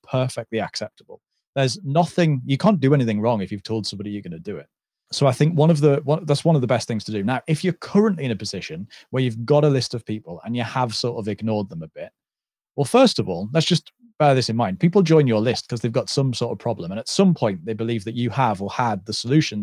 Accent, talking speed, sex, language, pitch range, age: British, 270 wpm, male, English, 115-155 Hz, 30-49